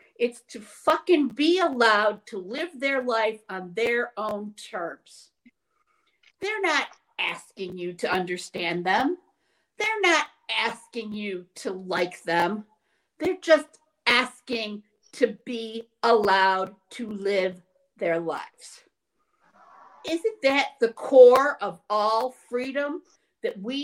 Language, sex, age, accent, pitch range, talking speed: English, female, 50-69, American, 210-295 Hz, 115 wpm